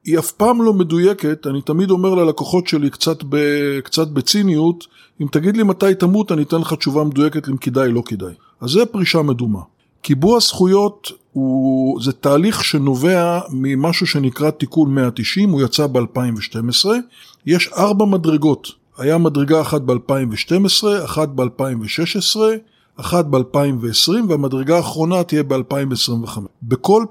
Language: Hebrew